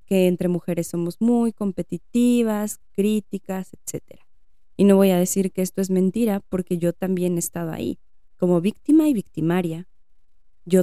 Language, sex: Spanish, female